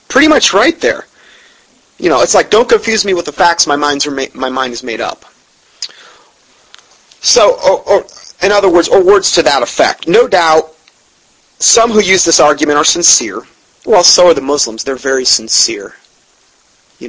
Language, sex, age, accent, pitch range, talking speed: English, male, 30-49, American, 140-200 Hz, 180 wpm